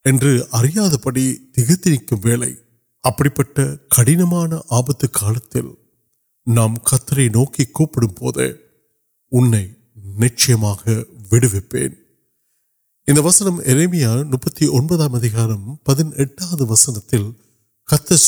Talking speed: 35 wpm